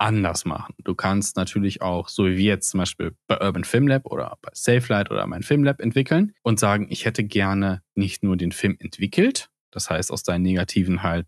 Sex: male